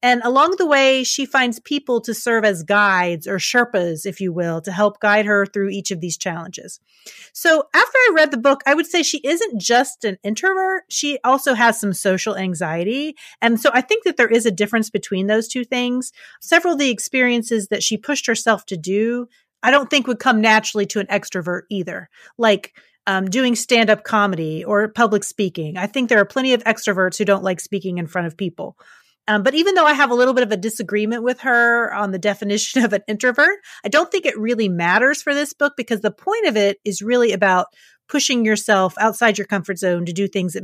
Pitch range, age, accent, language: 195-255 Hz, 30-49, American, English